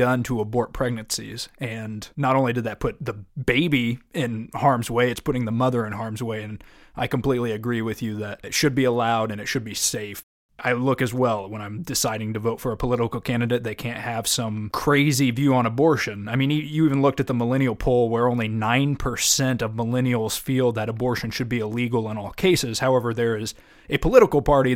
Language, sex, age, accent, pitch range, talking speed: English, male, 20-39, American, 115-140 Hz, 210 wpm